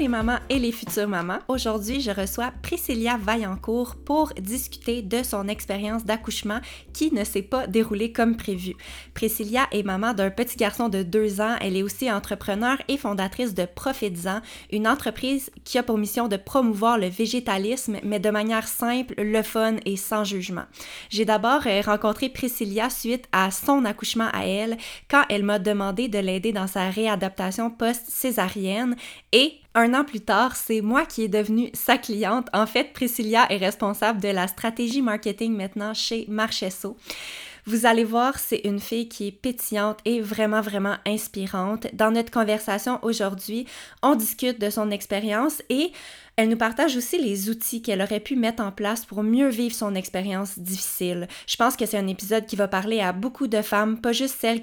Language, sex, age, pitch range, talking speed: French, female, 20-39, 205-240 Hz, 180 wpm